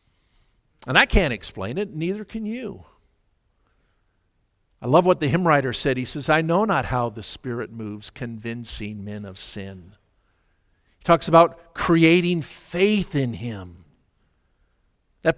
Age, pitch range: 50-69, 115-190 Hz